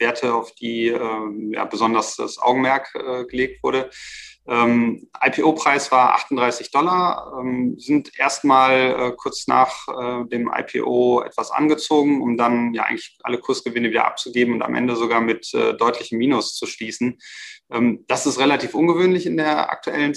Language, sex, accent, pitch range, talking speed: German, male, German, 115-130 Hz, 160 wpm